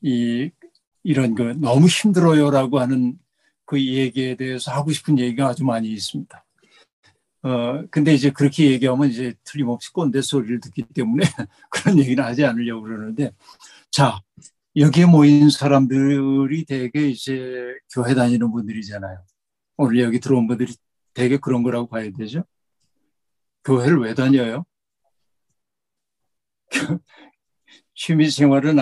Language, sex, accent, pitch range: Korean, male, native, 115-145 Hz